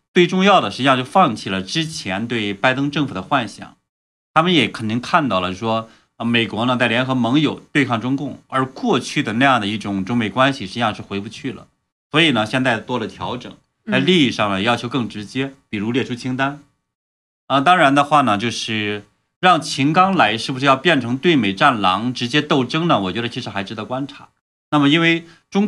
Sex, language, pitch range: male, Chinese, 105-145 Hz